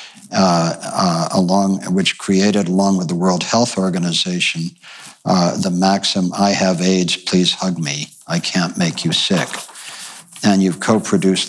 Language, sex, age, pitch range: English, male, 60-79, 90-110 Hz